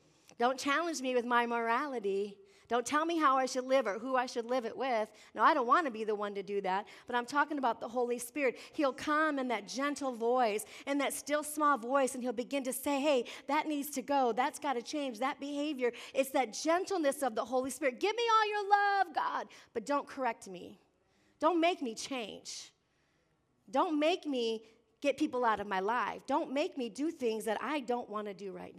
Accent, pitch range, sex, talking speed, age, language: American, 220-290 Hz, female, 225 wpm, 40-59, English